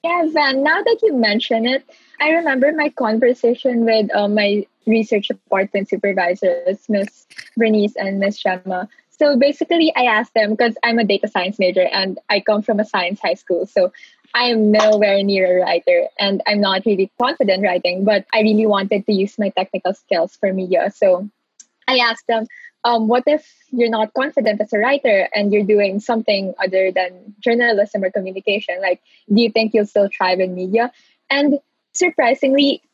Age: 20-39